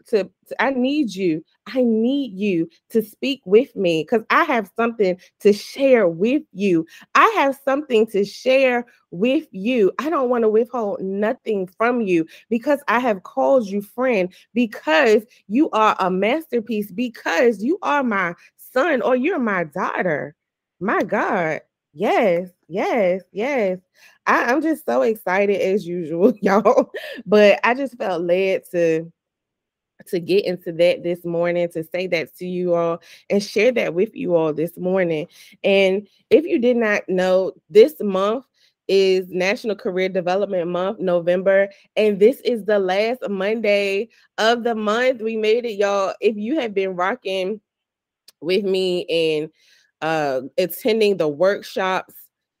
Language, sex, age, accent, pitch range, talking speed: English, female, 20-39, American, 185-235 Hz, 150 wpm